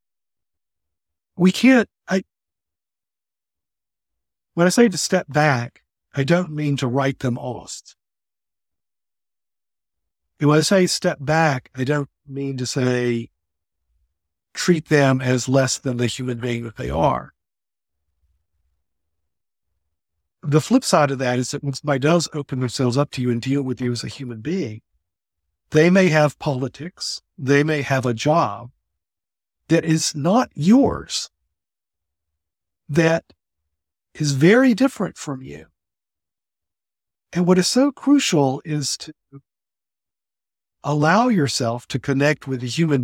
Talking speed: 130 wpm